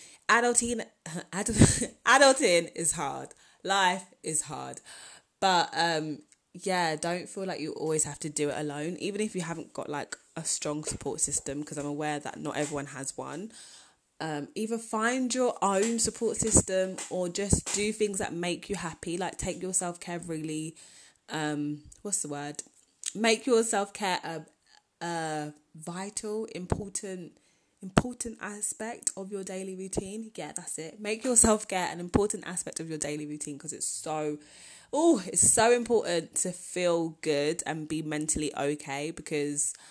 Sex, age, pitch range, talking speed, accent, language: female, 20-39, 150-195 Hz, 160 wpm, British, English